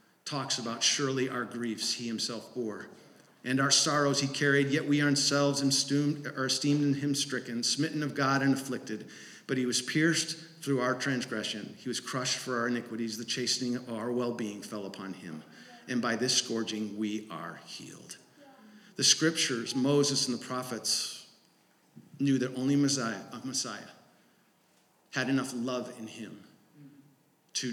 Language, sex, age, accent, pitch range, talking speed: English, male, 50-69, American, 120-145 Hz, 160 wpm